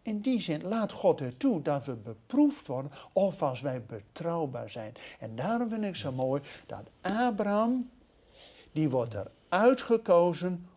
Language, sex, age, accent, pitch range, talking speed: Dutch, male, 60-79, Dutch, 150-230 Hz, 155 wpm